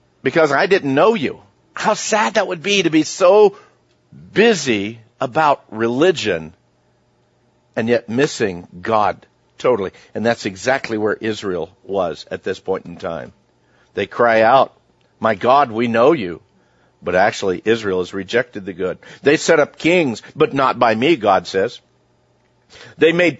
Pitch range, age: 110-145 Hz, 50-69